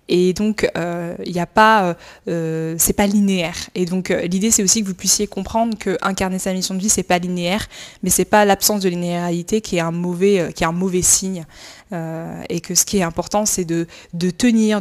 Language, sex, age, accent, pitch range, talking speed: French, female, 20-39, French, 180-220 Hz, 225 wpm